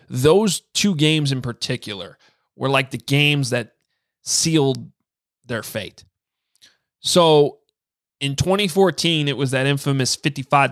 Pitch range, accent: 115-145 Hz, American